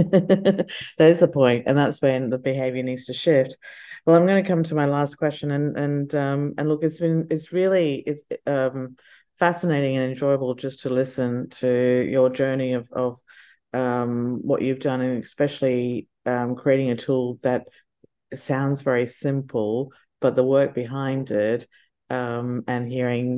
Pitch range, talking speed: 125-145 Hz, 165 wpm